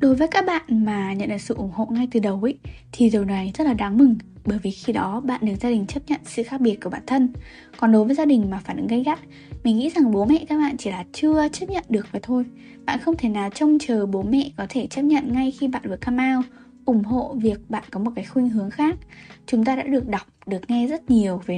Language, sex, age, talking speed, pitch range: Vietnamese, female, 10-29, 275 wpm, 210-265 Hz